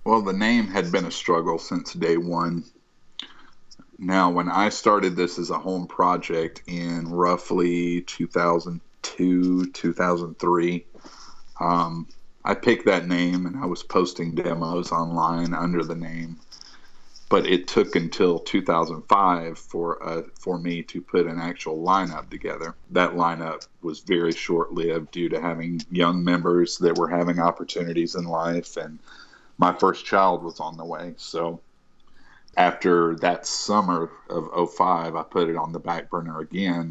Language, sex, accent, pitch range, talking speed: English, male, American, 85-90 Hz, 145 wpm